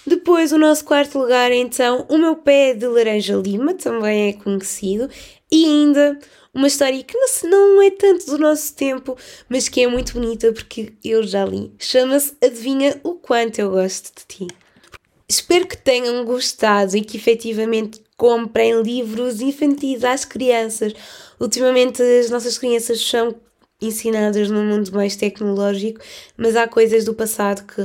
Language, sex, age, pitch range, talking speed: Portuguese, female, 20-39, 225-295 Hz, 155 wpm